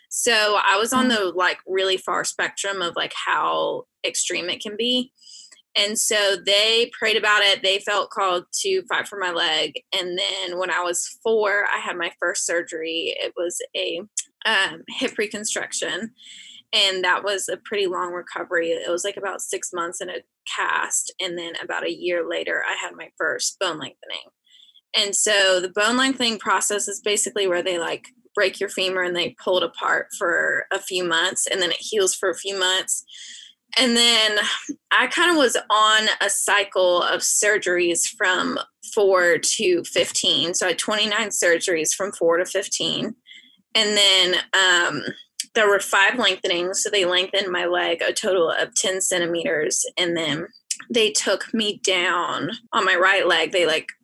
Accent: American